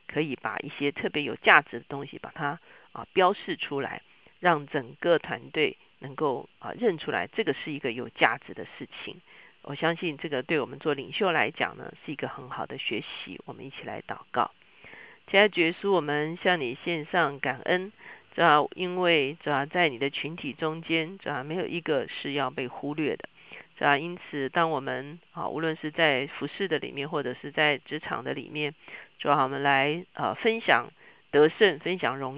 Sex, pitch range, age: female, 145-170 Hz, 50-69